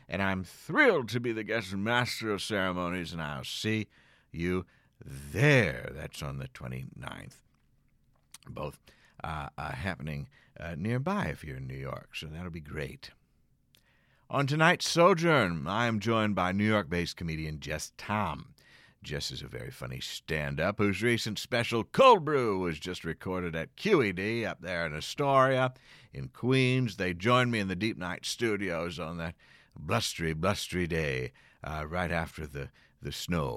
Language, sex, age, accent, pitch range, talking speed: English, male, 50-69, American, 80-125 Hz, 155 wpm